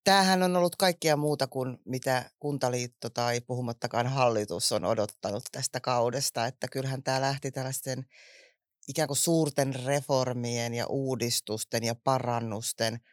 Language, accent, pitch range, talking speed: Finnish, native, 120-140 Hz, 130 wpm